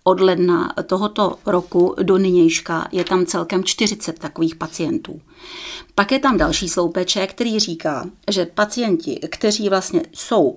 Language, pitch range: Czech, 175-210 Hz